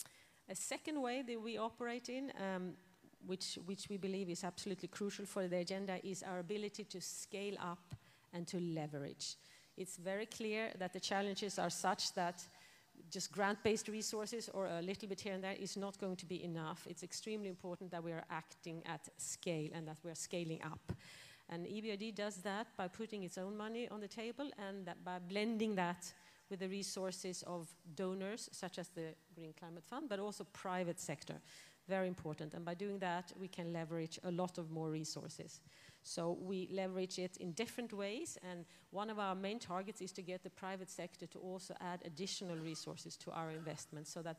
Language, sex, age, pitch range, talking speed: English, female, 40-59, 170-200 Hz, 190 wpm